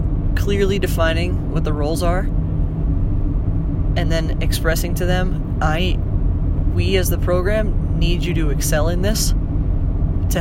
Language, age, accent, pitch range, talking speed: English, 20-39, American, 80-90 Hz, 135 wpm